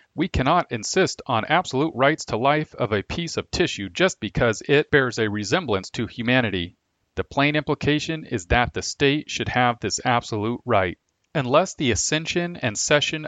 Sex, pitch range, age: male, 115-155 Hz, 40-59